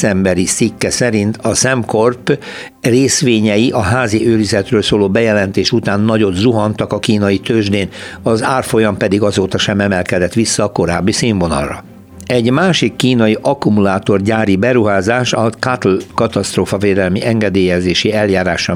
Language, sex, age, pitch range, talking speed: Hungarian, male, 60-79, 100-120 Hz, 115 wpm